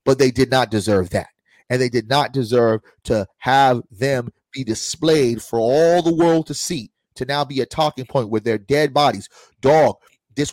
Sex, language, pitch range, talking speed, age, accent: male, English, 115-155 Hz, 195 wpm, 30-49, American